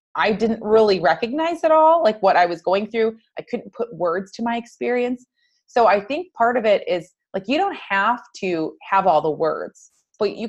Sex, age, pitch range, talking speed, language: female, 30-49, 165-225 Hz, 210 wpm, English